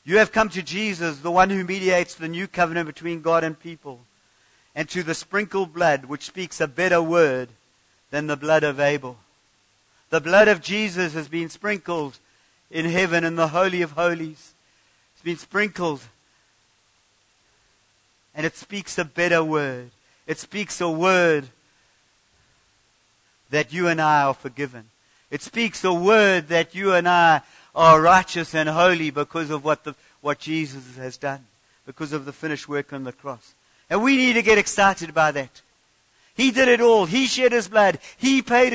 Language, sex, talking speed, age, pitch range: English, male, 170 wpm, 50-69, 130-195 Hz